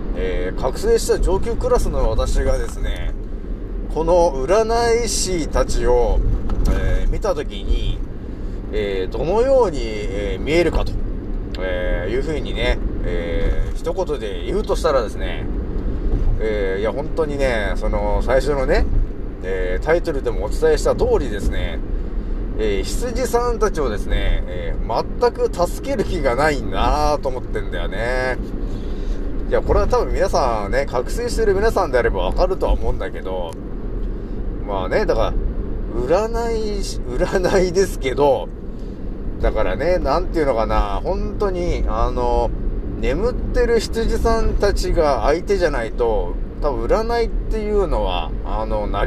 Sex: male